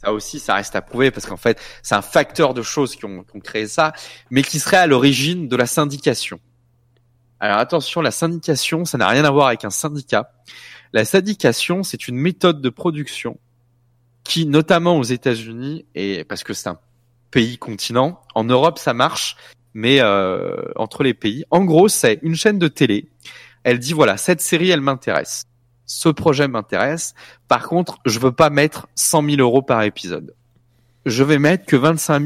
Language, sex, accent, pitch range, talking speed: French, male, French, 120-155 Hz, 185 wpm